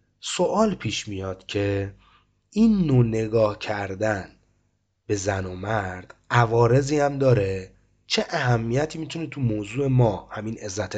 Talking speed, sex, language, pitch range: 125 wpm, male, Persian, 105-150 Hz